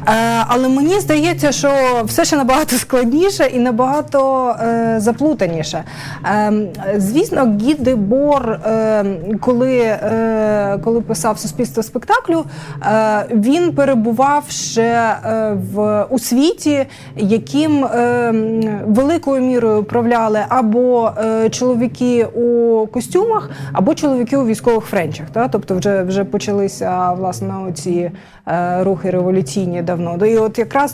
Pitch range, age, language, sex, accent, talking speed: 205-255 Hz, 20-39, Ukrainian, female, native, 115 wpm